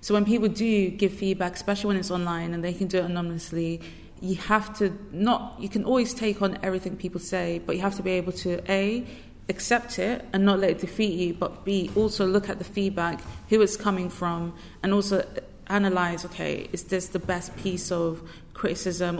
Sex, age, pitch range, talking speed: female, 20-39, 180-205 Hz, 205 wpm